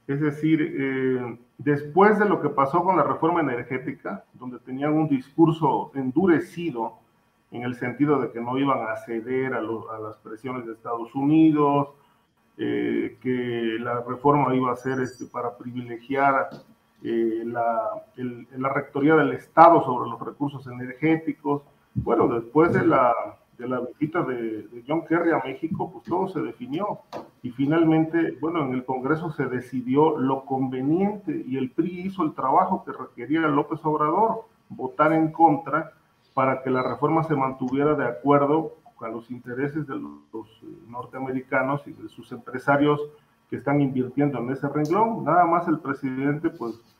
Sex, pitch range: male, 125-160 Hz